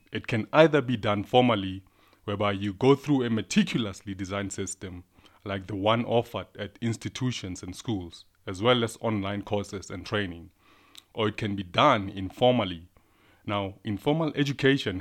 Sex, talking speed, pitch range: male, 150 wpm, 95-115 Hz